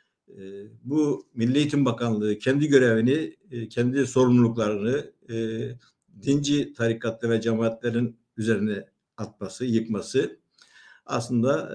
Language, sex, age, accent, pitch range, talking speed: Turkish, male, 60-79, native, 115-145 Hz, 80 wpm